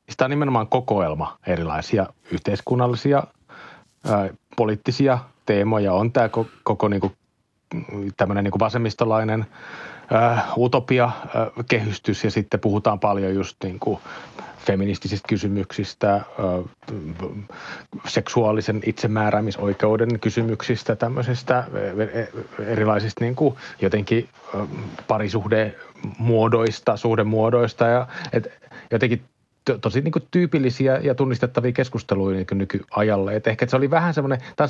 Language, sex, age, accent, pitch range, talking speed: Finnish, male, 30-49, native, 100-125 Hz, 110 wpm